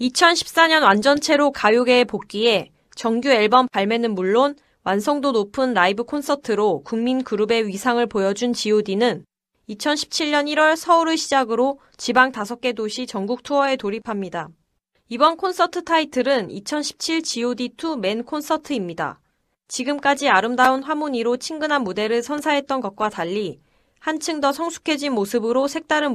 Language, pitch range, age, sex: Korean, 210-290 Hz, 20-39, female